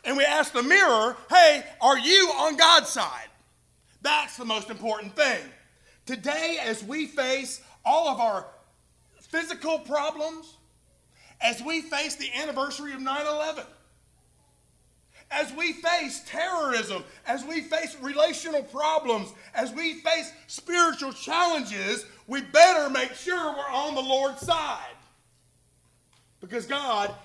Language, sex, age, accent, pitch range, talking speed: English, male, 30-49, American, 235-320 Hz, 125 wpm